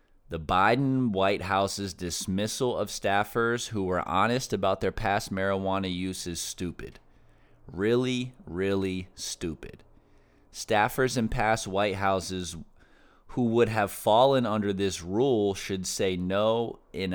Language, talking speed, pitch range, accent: English, 125 wpm, 85-105 Hz, American